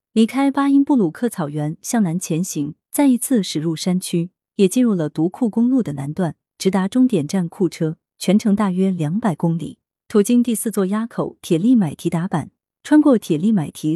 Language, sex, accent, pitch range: Chinese, female, native, 165-230 Hz